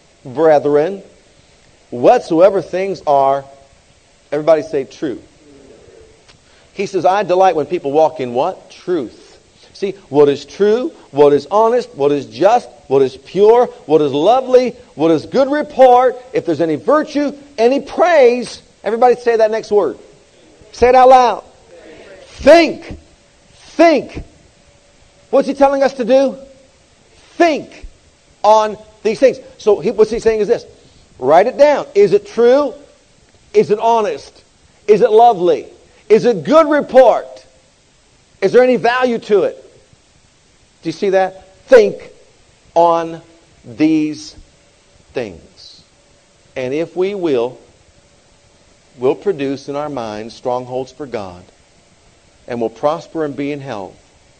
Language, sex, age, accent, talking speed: English, male, 50-69, American, 130 wpm